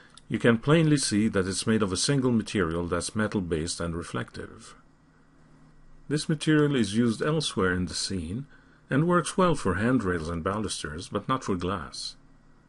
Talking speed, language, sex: 160 wpm, English, male